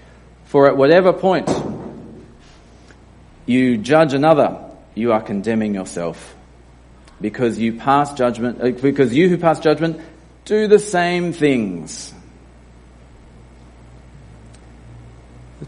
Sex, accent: male, Australian